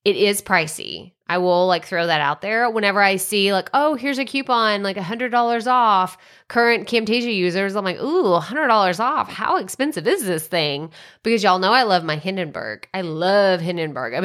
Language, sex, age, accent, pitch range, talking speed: English, female, 20-39, American, 160-215 Hz, 190 wpm